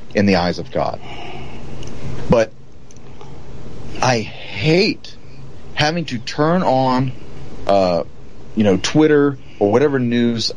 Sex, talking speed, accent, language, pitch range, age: male, 110 wpm, American, English, 105-135 Hz, 40-59